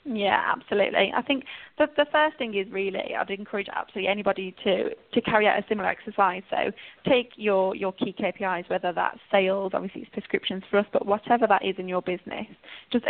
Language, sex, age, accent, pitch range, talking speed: English, female, 10-29, British, 180-215 Hz, 195 wpm